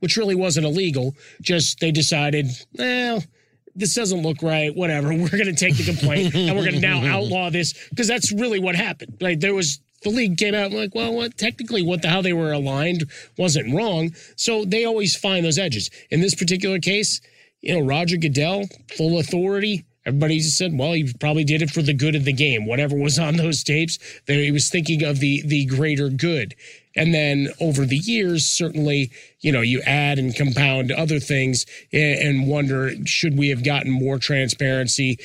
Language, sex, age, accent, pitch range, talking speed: English, male, 30-49, American, 135-165 Hz, 200 wpm